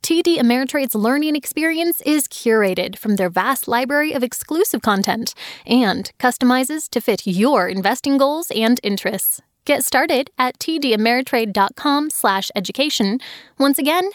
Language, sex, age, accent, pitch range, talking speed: English, female, 10-29, American, 225-300 Hz, 125 wpm